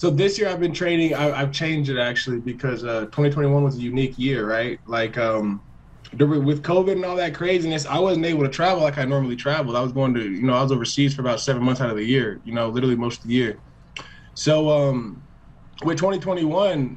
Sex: male